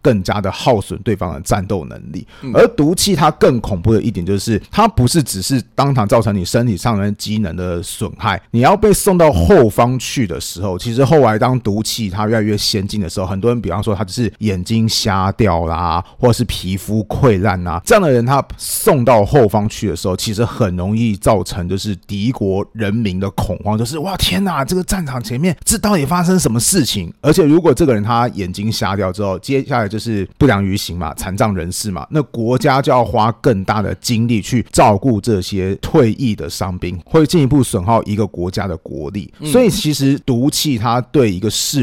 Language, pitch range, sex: Chinese, 100-135 Hz, male